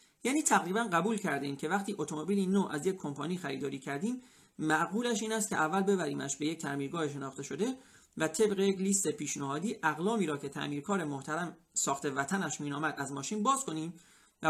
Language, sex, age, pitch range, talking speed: Persian, male, 40-59, 150-210 Hz, 175 wpm